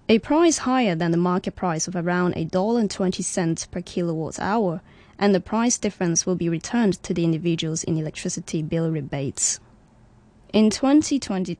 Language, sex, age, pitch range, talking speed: English, female, 20-39, 165-205 Hz, 175 wpm